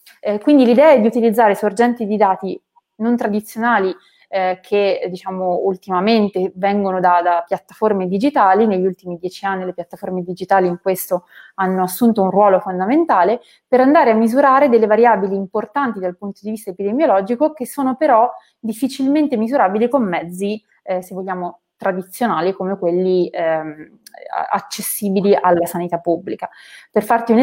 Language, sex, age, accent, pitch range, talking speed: Italian, female, 20-39, native, 185-235 Hz, 145 wpm